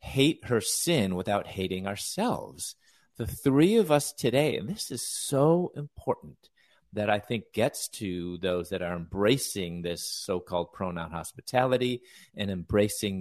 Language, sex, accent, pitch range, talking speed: English, male, American, 90-120 Hz, 140 wpm